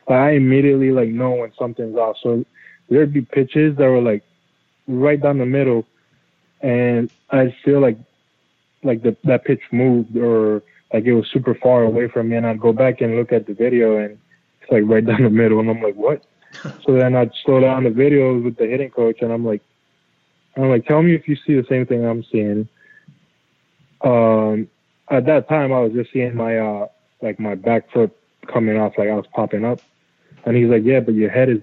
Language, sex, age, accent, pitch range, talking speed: English, male, 20-39, American, 110-130 Hz, 210 wpm